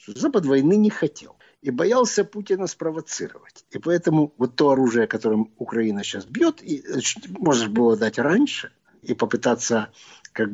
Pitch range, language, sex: 135-215 Hz, Russian, male